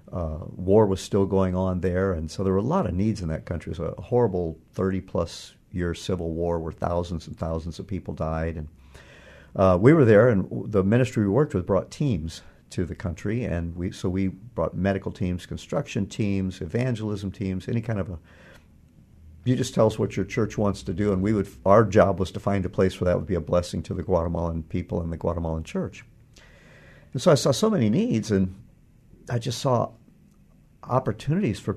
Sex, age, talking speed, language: male, 50-69, 210 wpm, English